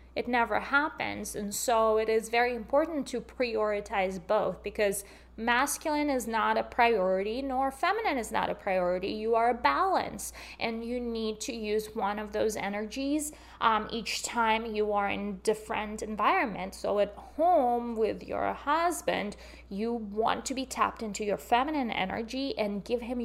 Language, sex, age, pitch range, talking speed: English, female, 20-39, 200-240 Hz, 165 wpm